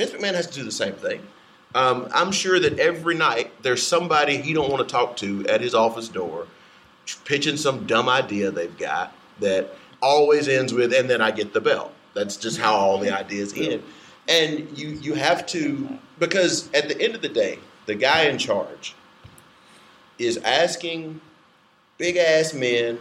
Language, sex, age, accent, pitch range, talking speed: English, male, 40-59, American, 110-160 Hz, 180 wpm